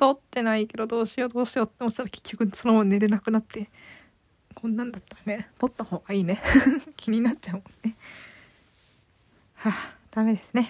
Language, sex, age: Japanese, female, 20-39